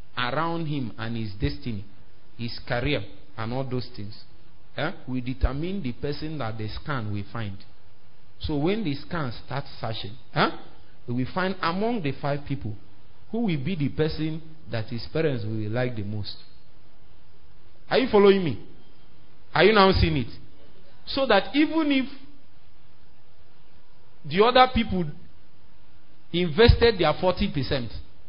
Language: English